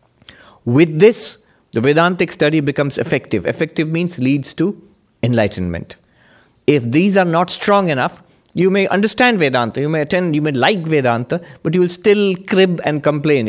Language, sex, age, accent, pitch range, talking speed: English, male, 50-69, Indian, 130-200 Hz, 160 wpm